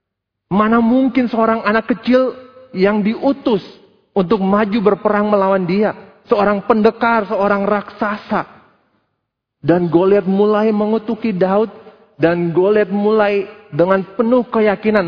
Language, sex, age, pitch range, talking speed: Indonesian, male, 30-49, 140-225 Hz, 105 wpm